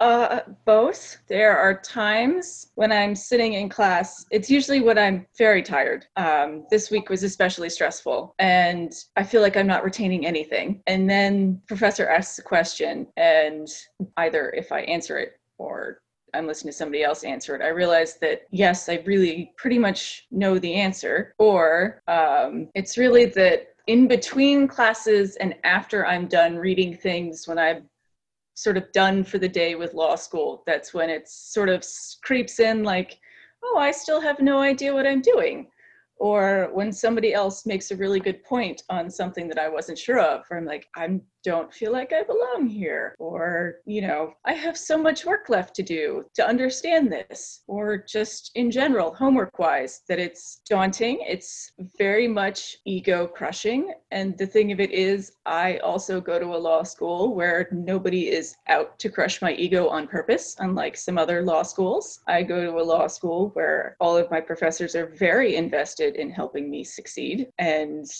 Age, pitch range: 20-39, 175-235 Hz